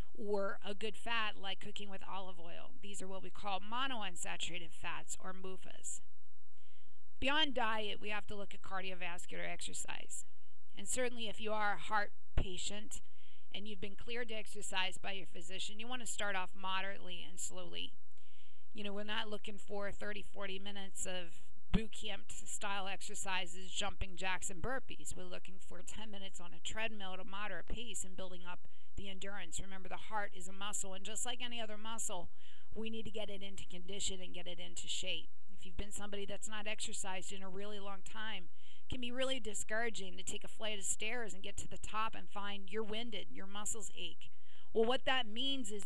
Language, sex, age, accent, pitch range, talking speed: English, female, 40-59, American, 185-215 Hz, 195 wpm